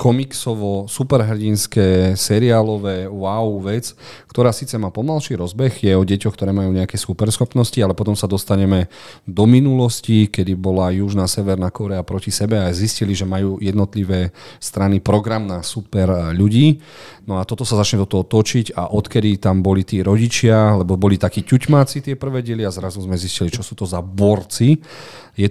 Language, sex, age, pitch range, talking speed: Slovak, male, 40-59, 95-110 Hz, 165 wpm